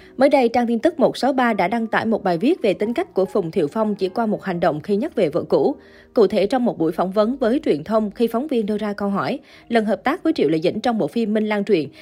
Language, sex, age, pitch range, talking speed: Vietnamese, female, 20-39, 190-245 Hz, 295 wpm